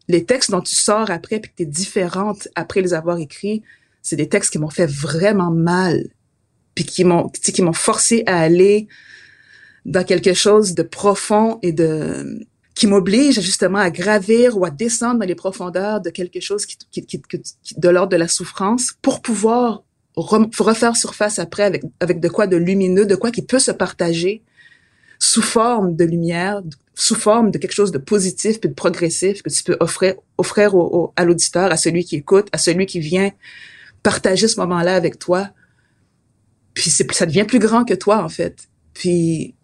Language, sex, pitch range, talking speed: French, female, 175-210 Hz, 195 wpm